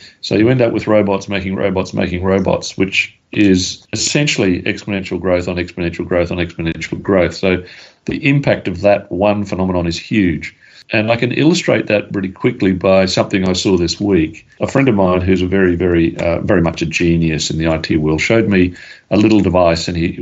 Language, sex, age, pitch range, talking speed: English, male, 40-59, 90-110 Hz, 200 wpm